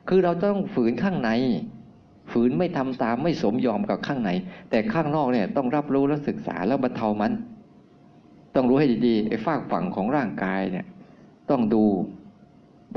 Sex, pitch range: male, 120-185 Hz